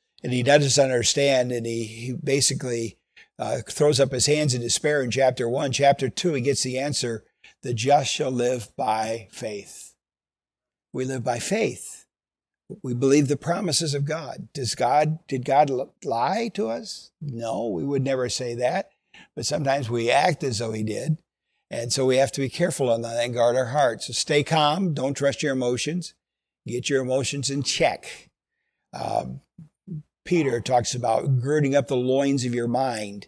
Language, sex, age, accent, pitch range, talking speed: English, male, 60-79, American, 125-145 Hz, 175 wpm